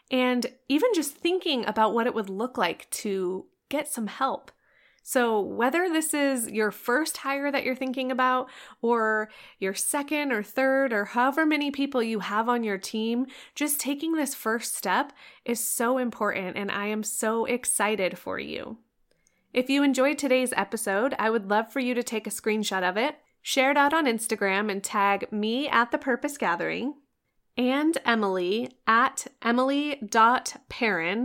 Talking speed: 165 wpm